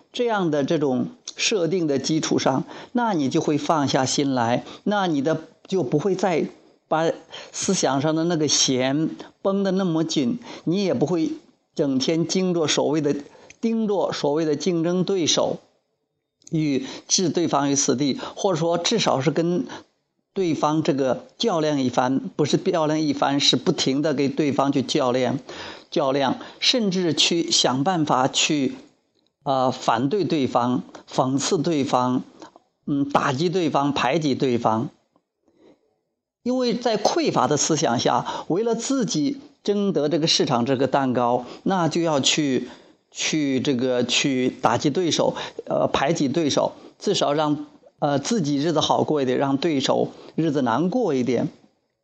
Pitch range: 140-190 Hz